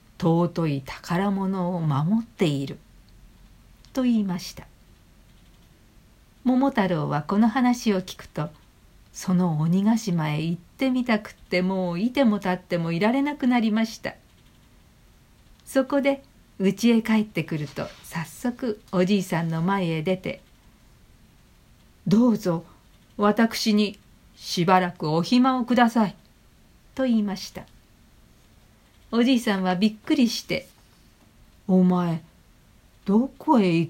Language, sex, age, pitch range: Japanese, female, 50-69, 165-225 Hz